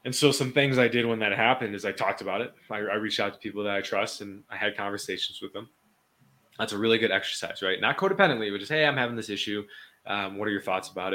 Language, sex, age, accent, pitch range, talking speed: English, male, 20-39, American, 105-130 Hz, 270 wpm